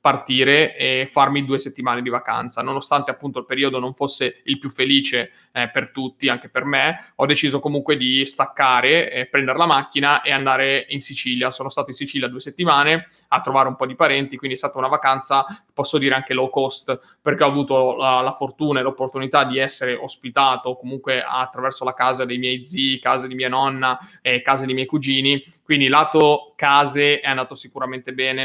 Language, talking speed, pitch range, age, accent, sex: Italian, 190 wpm, 130-140 Hz, 20-39, native, male